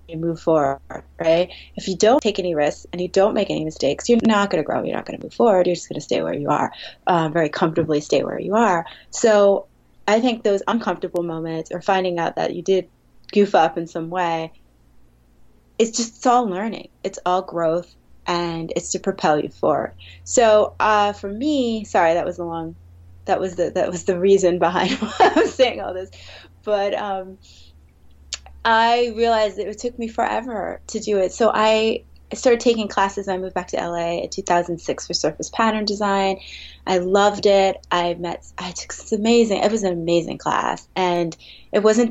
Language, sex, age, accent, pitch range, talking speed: English, female, 20-39, American, 165-205 Hz, 200 wpm